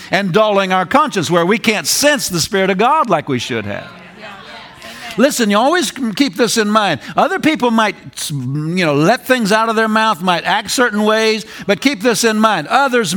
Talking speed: 200 wpm